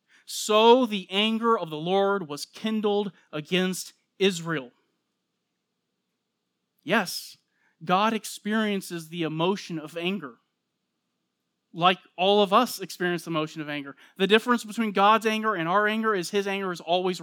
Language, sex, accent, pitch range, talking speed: English, male, American, 160-210 Hz, 135 wpm